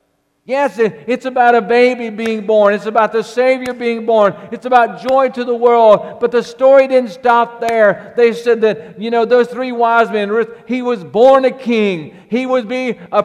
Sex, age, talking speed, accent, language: male, 50-69, 195 wpm, American, English